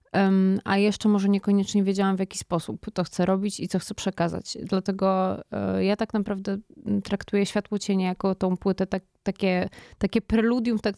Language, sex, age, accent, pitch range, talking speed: Polish, female, 20-39, native, 190-215 Hz, 160 wpm